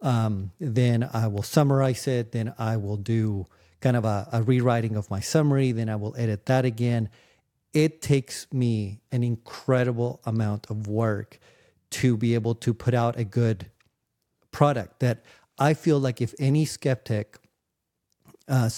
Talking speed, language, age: 155 wpm, English, 40-59